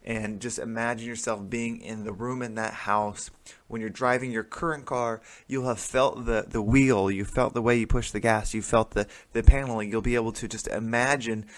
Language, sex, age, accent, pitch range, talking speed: English, male, 20-39, American, 110-130 Hz, 220 wpm